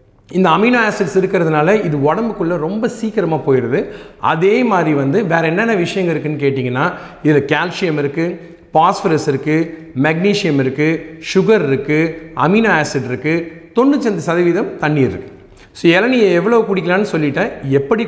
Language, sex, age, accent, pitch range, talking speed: Tamil, male, 40-59, native, 145-195 Hz, 125 wpm